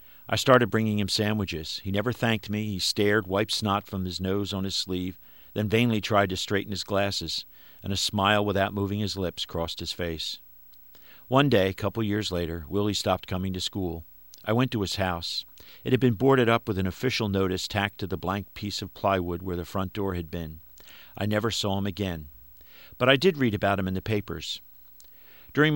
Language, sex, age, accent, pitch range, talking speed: English, male, 50-69, American, 95-110 Hz, 205 wpm